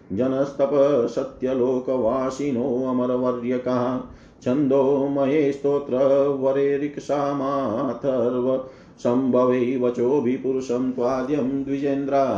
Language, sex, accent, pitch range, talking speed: Hindi, male, native, 125-140 Hz, 70 wpm